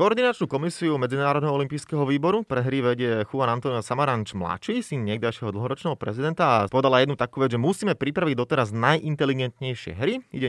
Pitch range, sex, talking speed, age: 125-150 Hz, male, 155 wpm, 30-49